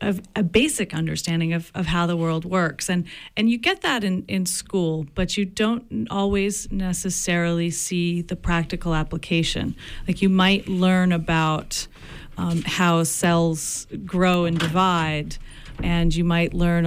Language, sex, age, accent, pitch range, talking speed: English, female, 40-59, American, 165-195 Hz, 150 wpm